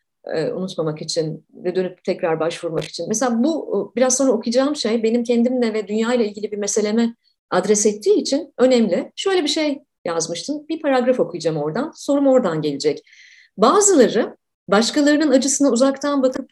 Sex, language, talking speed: female, Turkish, 145 wpm